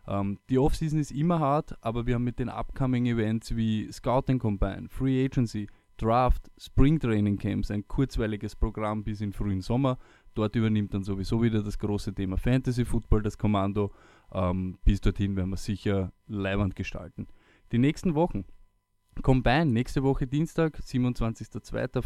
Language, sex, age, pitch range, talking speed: German, male, 20-39, 100-125 Hz, 160 wpm